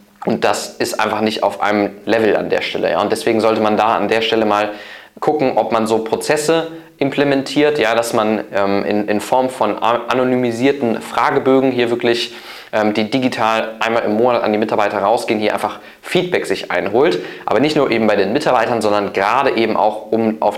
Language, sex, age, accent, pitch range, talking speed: German, male, 20-39, German, 105-125 Hz, 190 wpm